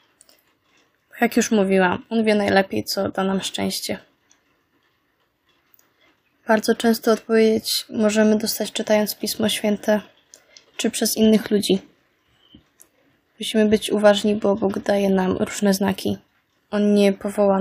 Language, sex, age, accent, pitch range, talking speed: Polish, female, 20-39, native, 200-220 Hz, 115 wpm